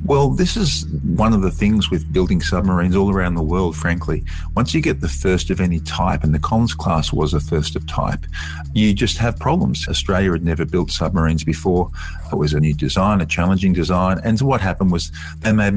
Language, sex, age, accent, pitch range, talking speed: English, male, 50-69, Australian, 80-95 Hz, 215 wpm